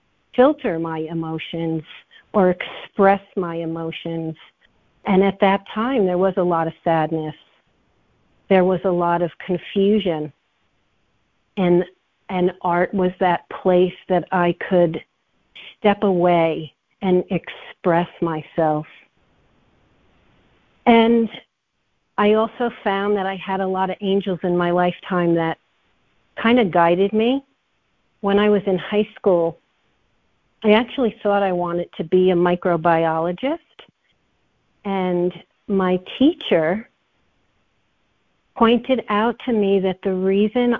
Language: English